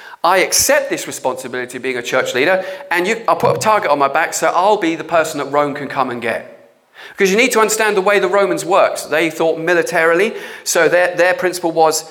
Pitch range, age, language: 150-210 Hz, 40-59, English